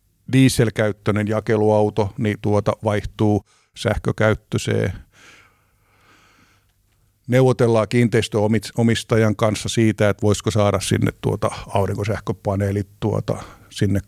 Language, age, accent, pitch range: Finnish, 50-69, native, 100-115 Hz